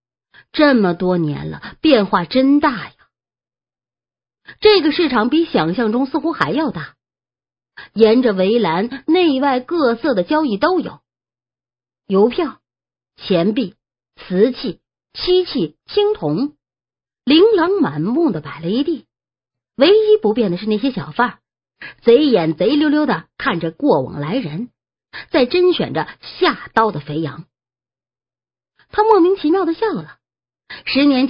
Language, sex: English, female